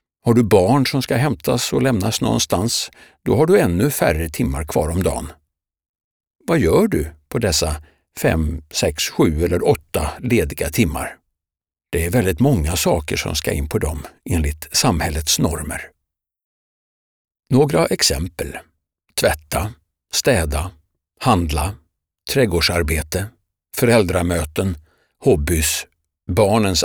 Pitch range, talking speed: 75-95 Hz, 115 wpm